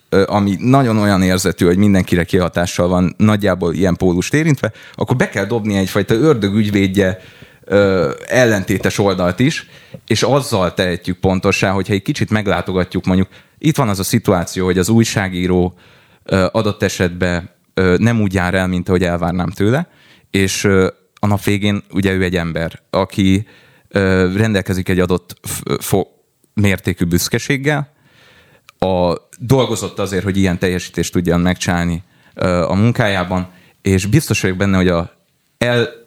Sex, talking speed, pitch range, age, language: male, 145 wpm, 90-110 Hz, 30-49, Hungarian